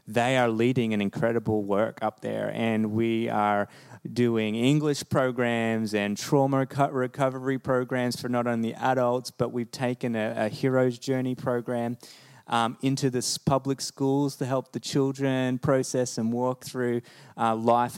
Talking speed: 150 wpm